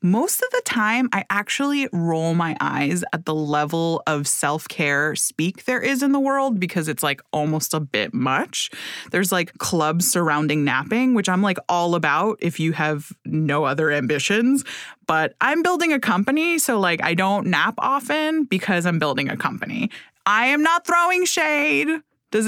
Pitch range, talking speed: 165-245 Hz, 175 wpm